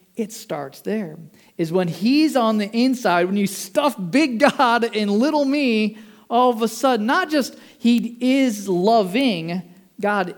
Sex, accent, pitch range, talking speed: male, American, 165-245 Hz, 155 wpm